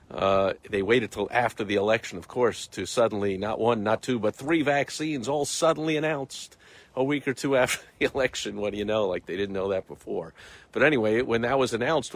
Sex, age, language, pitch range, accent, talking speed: male, 50-69, English, 100-135 Hz, American, 215 wpm